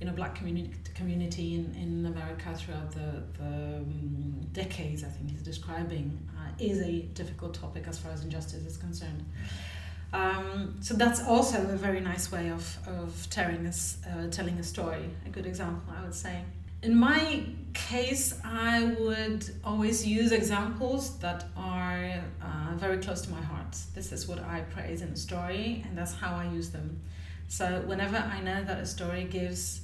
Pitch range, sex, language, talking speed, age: 80-90 Hz, female, English, 170 wpm, 30-49